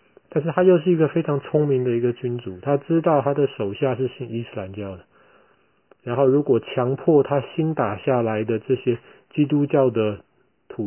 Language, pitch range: Chinese, 110-135 Hz